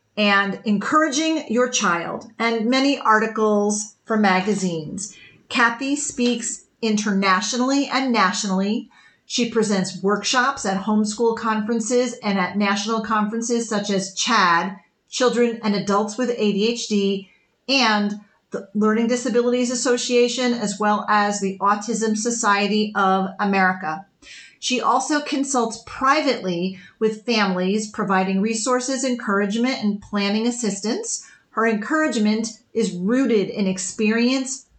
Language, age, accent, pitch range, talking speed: English, 40-59, American, 205-245 Hz, 110 wpm